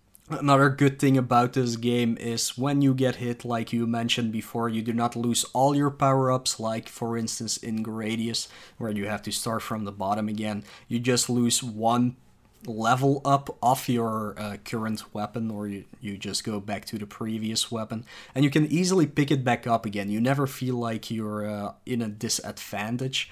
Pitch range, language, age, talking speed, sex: 110-135 Hz, English, 20-39, 195 wpm, male